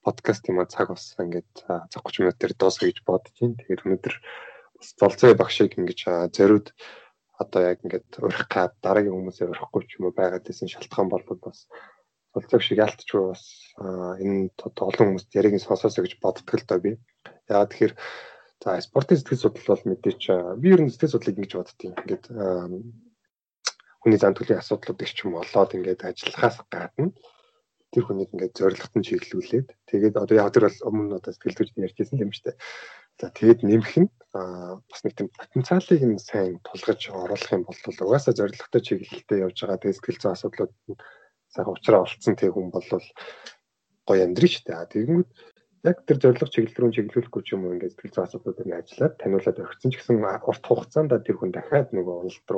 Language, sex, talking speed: English, male, 110 wpm